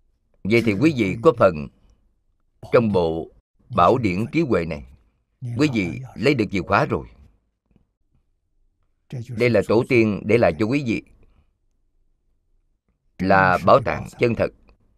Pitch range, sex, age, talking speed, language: 85-115 Hz, male, 50-69, 135 wpm, Vietnamese